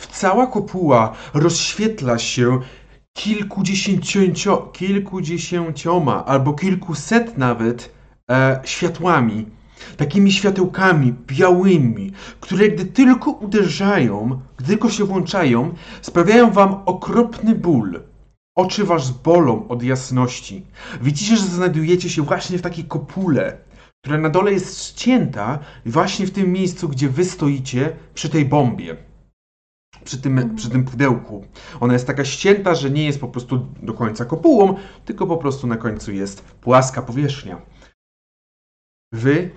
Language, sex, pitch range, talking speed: Polish, male, 120-180 Hz, 120 wpm